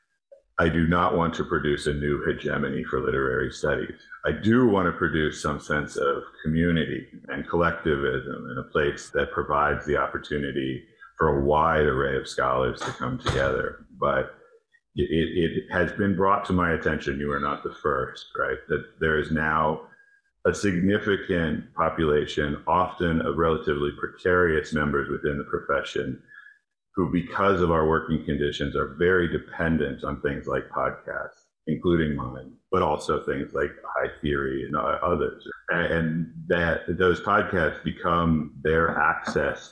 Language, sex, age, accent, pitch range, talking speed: English, male, 50-69, American, 75-100 Hz, 150 wpm